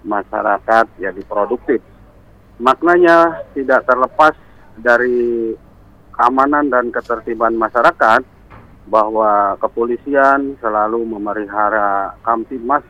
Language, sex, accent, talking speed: Indonesian, male, native, 75 wpm